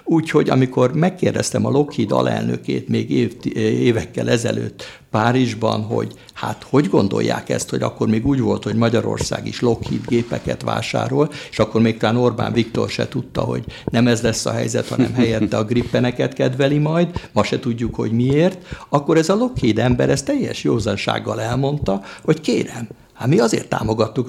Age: 60-79